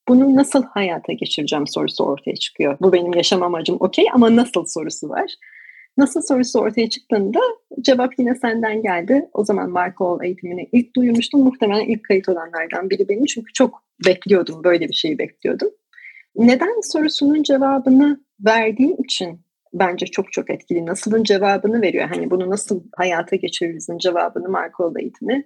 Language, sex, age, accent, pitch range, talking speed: Turkish, female, 30-49, native, 185-275 Hz, 150 wpm